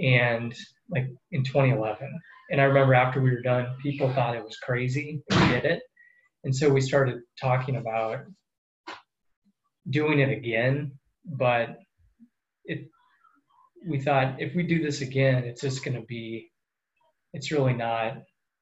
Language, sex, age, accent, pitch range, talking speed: English, male, 20-39, American, 125-150 Hz, 145 wpm